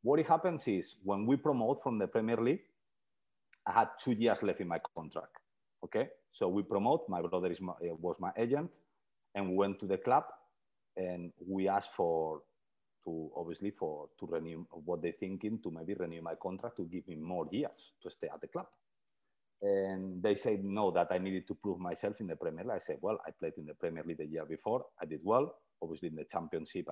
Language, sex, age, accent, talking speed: English, male, 40-59, Spanish, 215 wpm